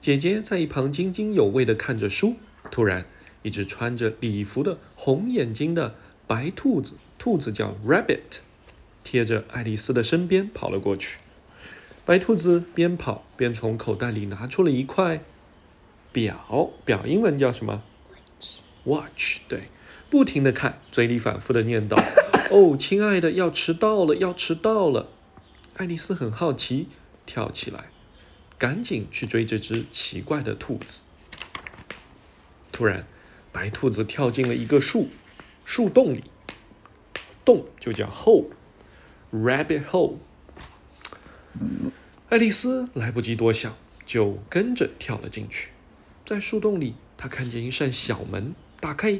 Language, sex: Chinese, male